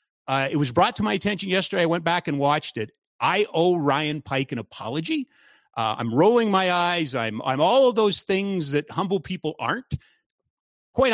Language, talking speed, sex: English, 195 wpm, male